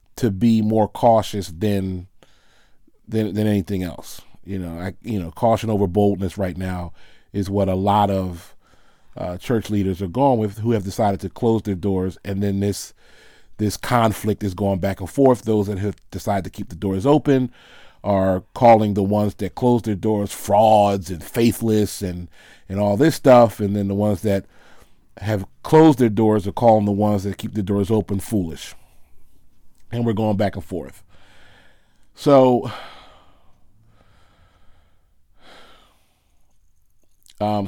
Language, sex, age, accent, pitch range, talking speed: English, male, 30-49, American, 95-110 Hz, 160 wpm